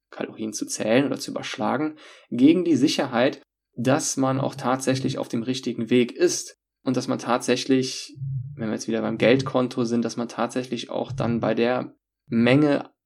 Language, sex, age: German, male, 20-39